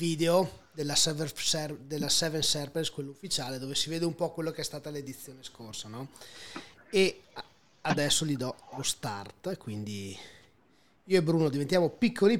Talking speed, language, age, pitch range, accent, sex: 145 wpm, Italian, 30-49, 140-175 Hz, native, male